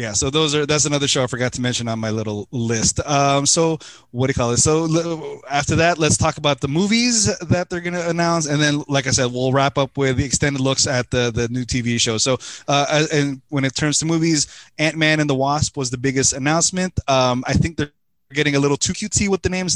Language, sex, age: English, male, 20-39